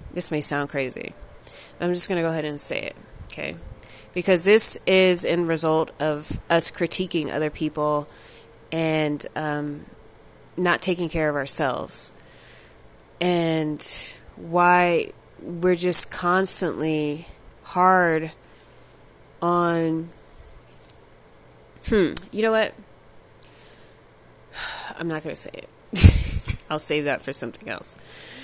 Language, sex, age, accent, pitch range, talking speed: English, female, 20-39, American, 150-180 Hz, 115 wpm